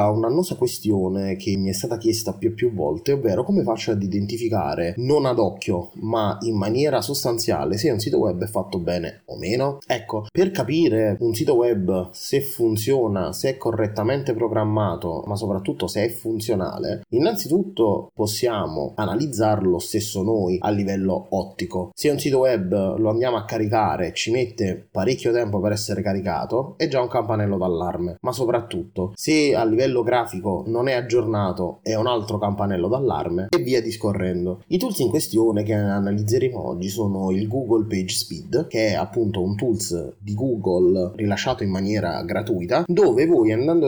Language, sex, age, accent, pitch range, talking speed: Italian, male, 20-39, native, 100-130 Hz, 165 wpm